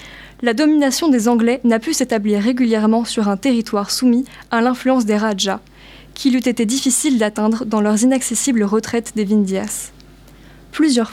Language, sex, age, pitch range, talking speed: French, female, 20-39, 220-260 Hz, 150 wpm